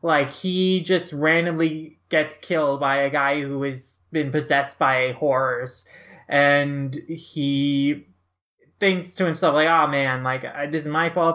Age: 20-39